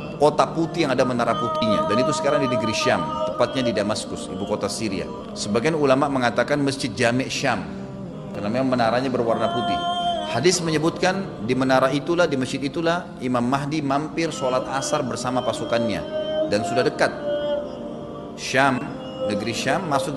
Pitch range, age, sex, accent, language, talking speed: 120-165 Hz, 30-49, male, native, Indonesian, 150 wpm